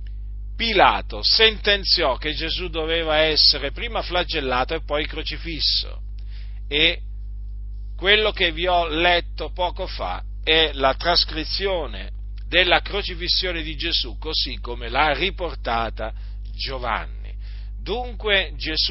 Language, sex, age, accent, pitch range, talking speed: Italian, male, 40-59, native, 110-180 Hz, 100 wpm